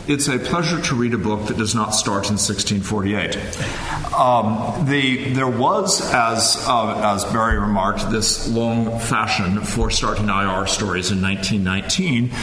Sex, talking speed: male, 150 wpm